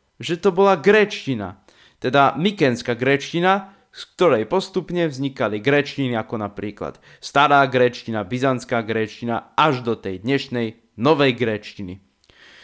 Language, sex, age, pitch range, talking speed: Slovak, male, 20-39, 120-160 Hz, 115 wpm